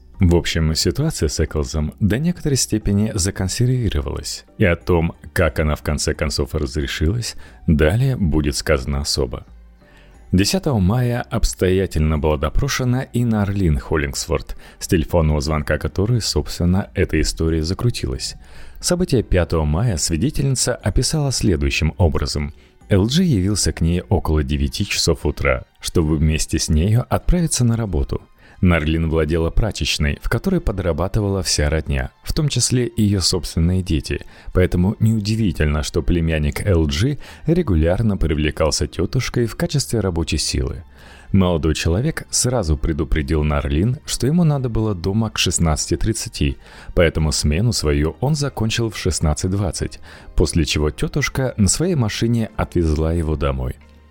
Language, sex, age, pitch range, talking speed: Russian, male, 30-49, 75-110 Hz, 130 wpm